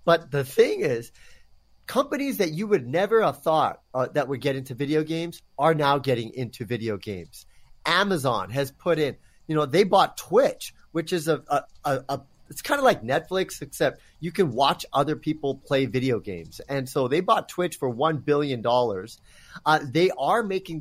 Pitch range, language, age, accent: 135-175 Hz, English, 30-49, American